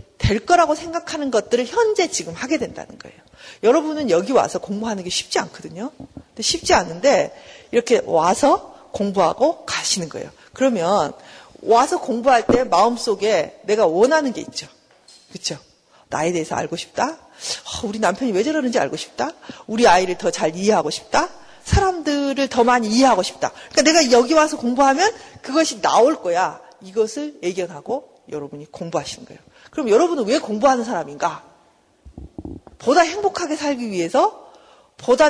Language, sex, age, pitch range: Korean, female, 50-69, 200-315 Hz